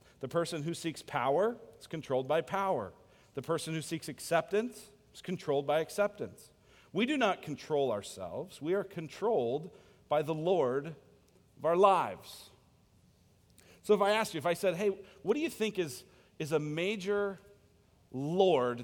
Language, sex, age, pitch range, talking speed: English, male, 40-59, 125-185 Hz, 160 wpm